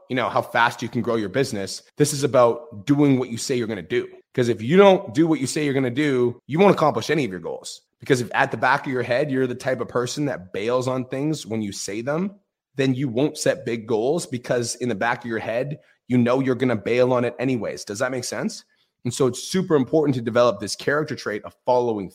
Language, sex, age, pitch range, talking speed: English, male, 30-49, 120-145 Hz, 265 wpm